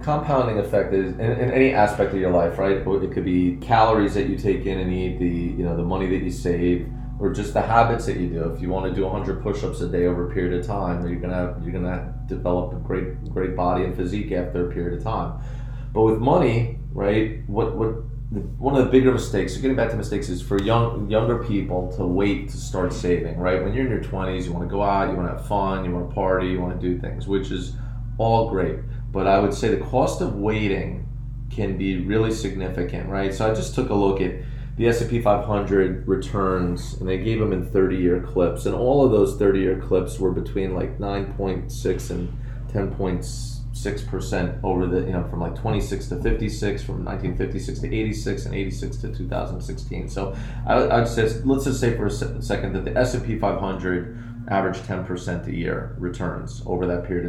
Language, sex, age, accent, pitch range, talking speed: English, male, 30-49, American, 95-120 Hz, 215 wpm